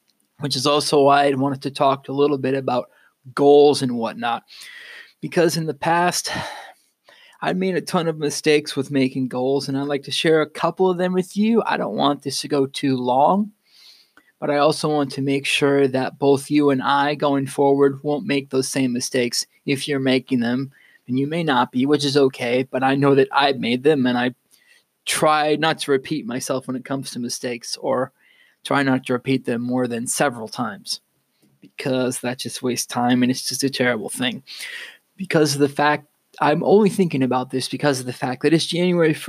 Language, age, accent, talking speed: English, 20-39, American, 205 wpm